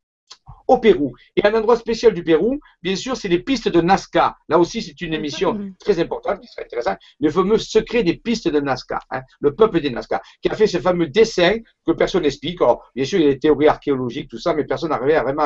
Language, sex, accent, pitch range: French, male, French, 165-230 Hz